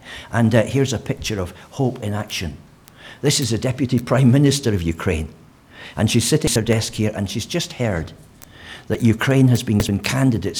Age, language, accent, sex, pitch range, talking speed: 60-79, English, British, male, 90-115 Hz, 190 wpm